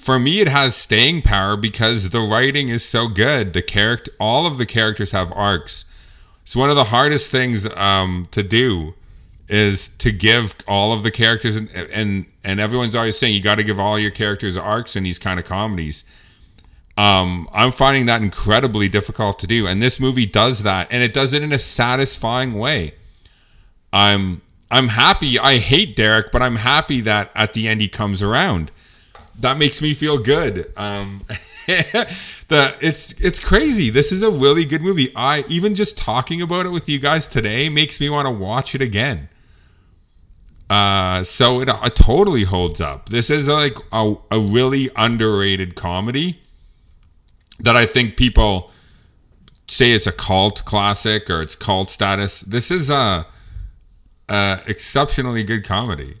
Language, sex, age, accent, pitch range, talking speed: English, male, 30-49, American, 95-125 Hz, 170 wpm